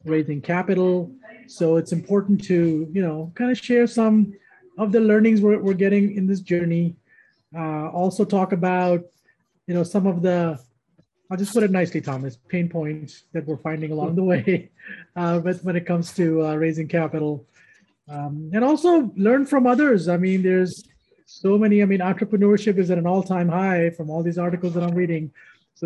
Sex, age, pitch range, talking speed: male, 30-49, 165-195 Hz, 185 wpm